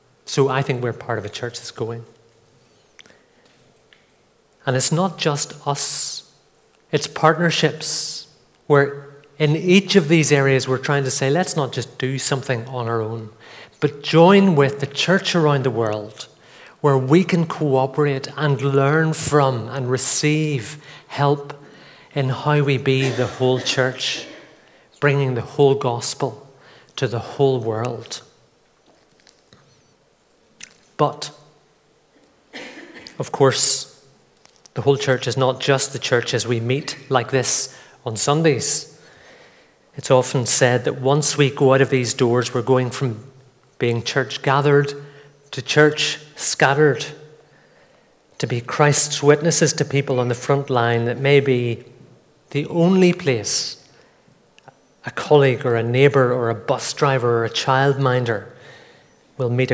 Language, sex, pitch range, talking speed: English, male, 125-150 Hz, 135 wpm